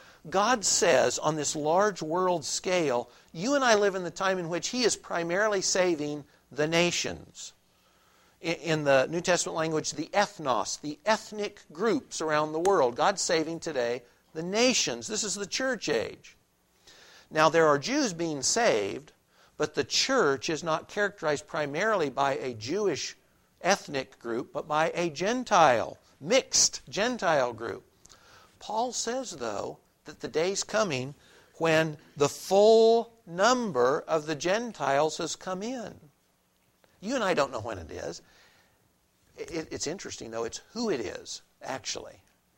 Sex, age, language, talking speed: male, 60-79, English, 145 wpm